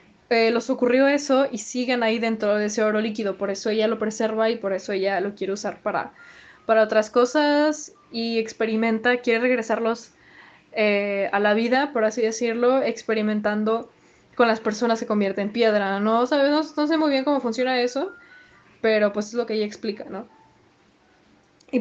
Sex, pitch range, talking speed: female, 215-255 Hz, 180 wpm